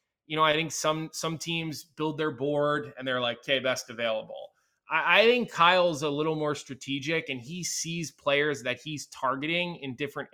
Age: 20-39